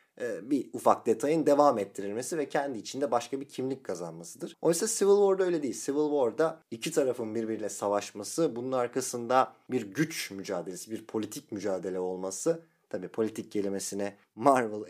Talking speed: 145 wpm